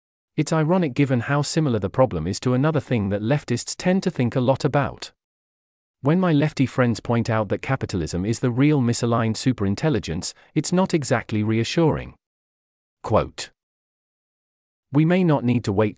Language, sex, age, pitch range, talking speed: English, male, 40-59, 105-140 Hz, 160 wpm